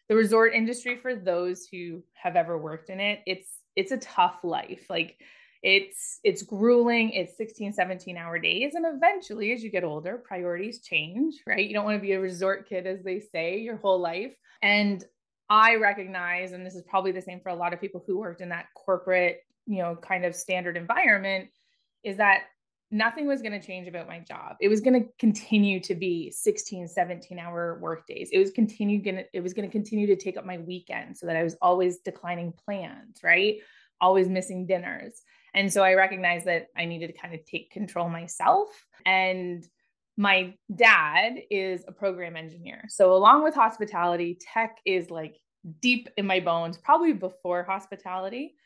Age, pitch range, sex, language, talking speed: 20-39, 180-225 Hz, female, English, 190 wpm